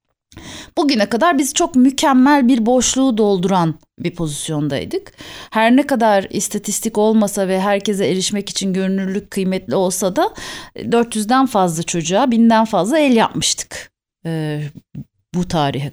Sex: female